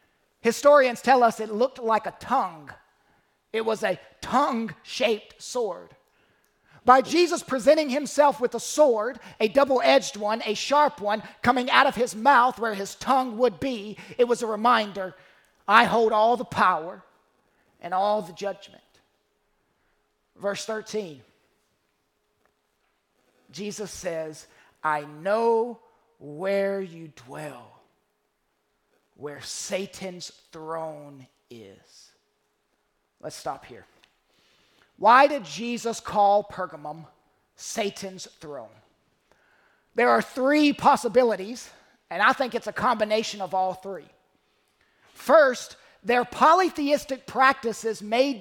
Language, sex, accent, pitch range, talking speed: English, male, American, 195-250 Hz, 110 wpm